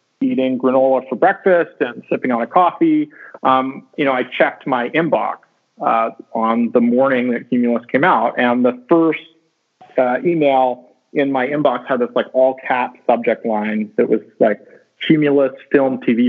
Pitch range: 120-160 Hz